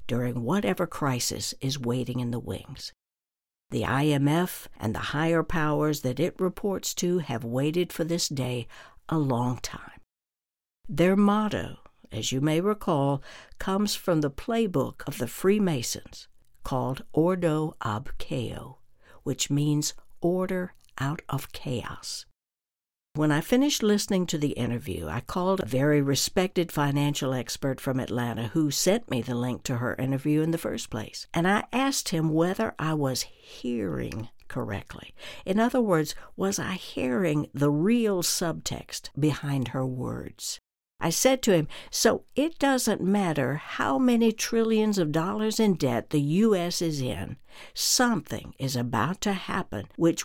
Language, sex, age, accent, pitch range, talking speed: English, female, 60-79, American, 130-190 Hz, 145 wpm